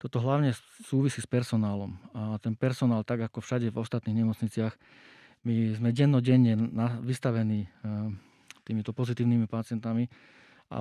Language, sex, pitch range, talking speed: Slovak, male, 110-125 Hz, 120 wpm